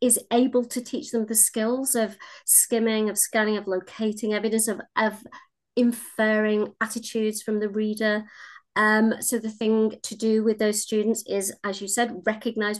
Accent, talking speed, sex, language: British, 165 wpm, female, English